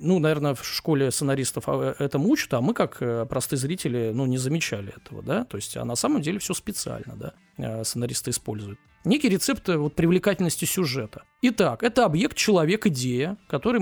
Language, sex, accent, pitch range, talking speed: Russian, male, native, 120-200 Hz, 170 wpm